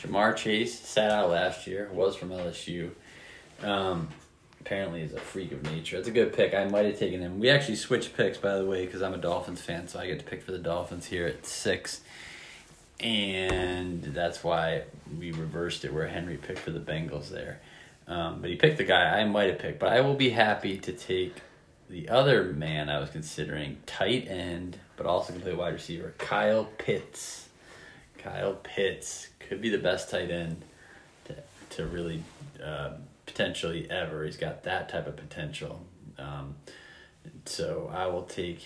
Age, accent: 20-39, American